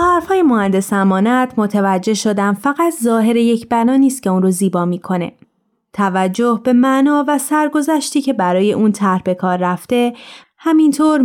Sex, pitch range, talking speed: female, 195-260 Hz, 150 wpm